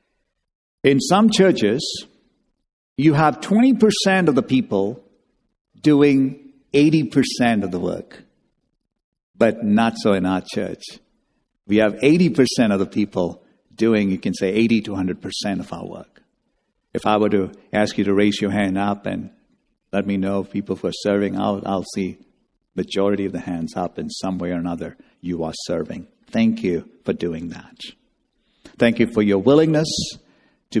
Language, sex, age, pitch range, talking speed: English, male, 60-79, 105-150 Hz, 160 wpm